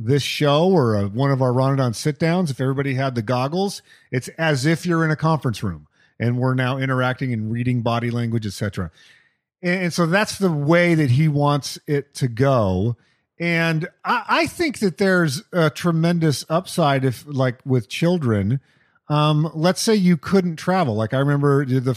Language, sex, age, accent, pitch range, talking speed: English, male, 40-59, American, 125-170 Hz, 185 wpm